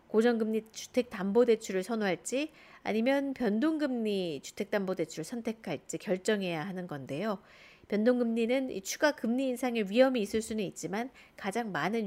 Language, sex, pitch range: Korean, female, 195-260 Hz